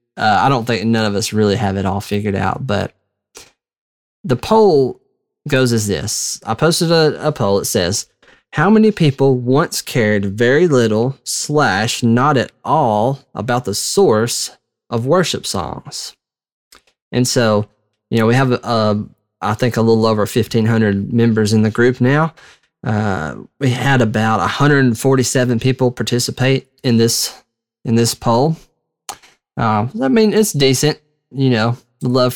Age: 20-39